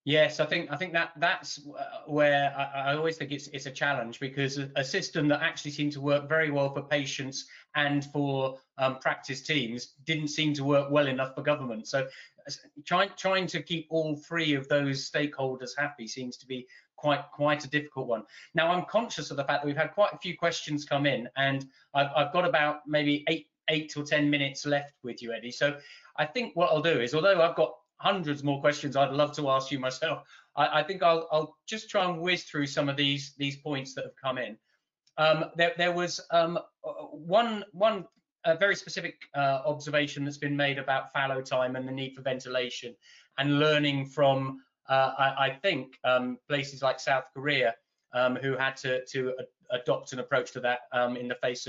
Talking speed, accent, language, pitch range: 205 wpm, British, English, 135-155 Hz